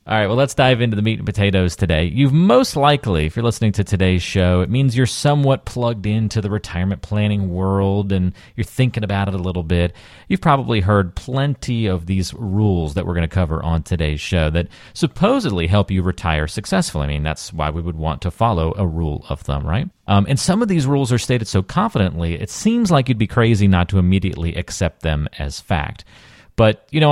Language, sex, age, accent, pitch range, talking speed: English, male, 30-49, American, 85-125 Hz, 220 wpm